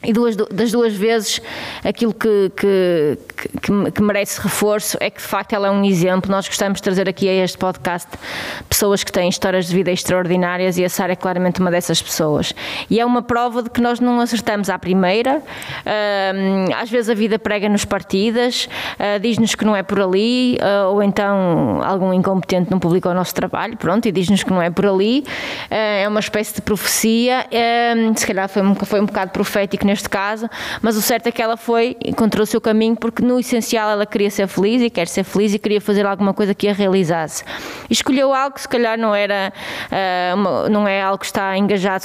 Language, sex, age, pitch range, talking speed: Portuguese, female, 20-39, 190-220 Hz, 205 wpm